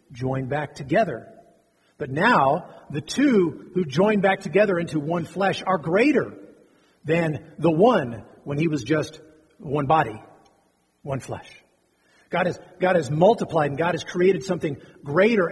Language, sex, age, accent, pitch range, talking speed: English, male, 40-59, American, 140-185 Hz, 145 wpm